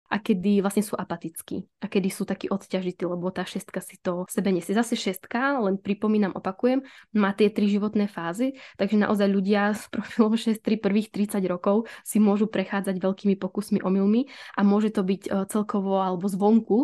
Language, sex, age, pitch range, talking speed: Czech, female, 10-29, 195-235 Hz, 180 wpm